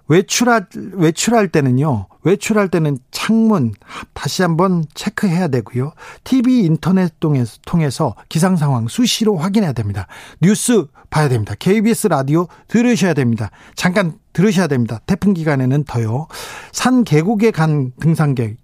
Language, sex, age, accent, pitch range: Korean, male, 40-59, native, 135-195 Hz